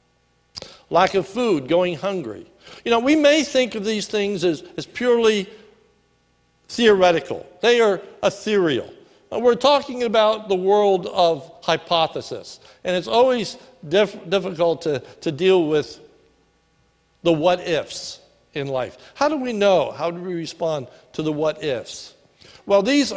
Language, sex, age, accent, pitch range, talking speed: English, male, 60-79, American, 180-235 Hz, 135 wpm